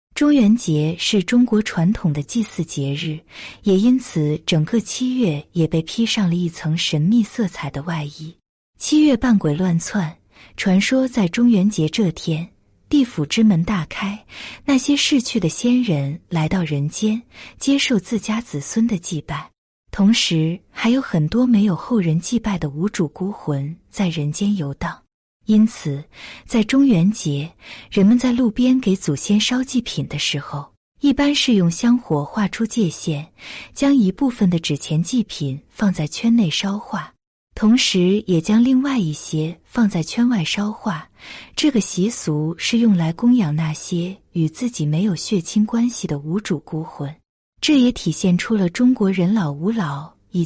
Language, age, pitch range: Chinese, 20-39, 160-230 Hz